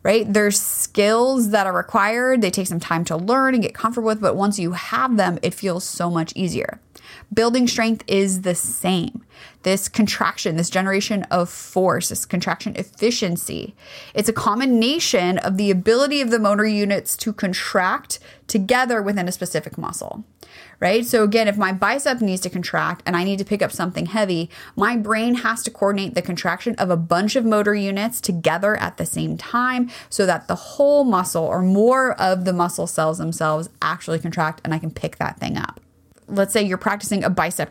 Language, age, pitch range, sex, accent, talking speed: English, 20-39, 175-220 Hz, female, American, 190 wpm